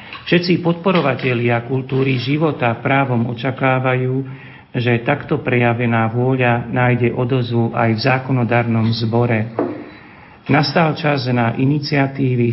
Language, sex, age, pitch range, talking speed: Slovak, male, 50-69, 120-140 Hz, 95 wpm